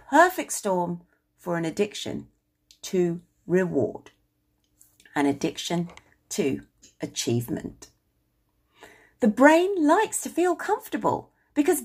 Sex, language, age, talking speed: female, English, 40-59, 90 wpm